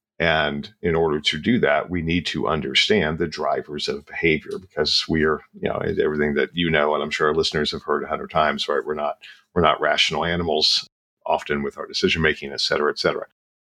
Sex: male